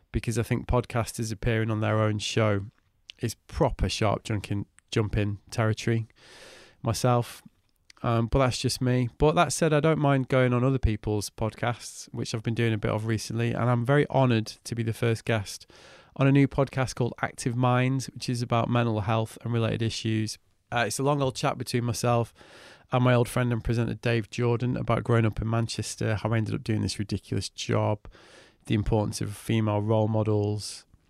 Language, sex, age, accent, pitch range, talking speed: English, male, 20-39, British, 110-125 Hz, 190 wpm